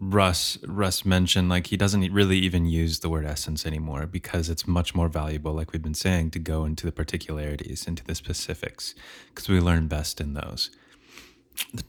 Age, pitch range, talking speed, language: 20-39, 80-100 Hz, 185 wpm, English